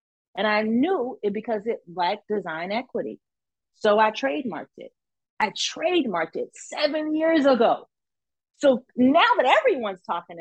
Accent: American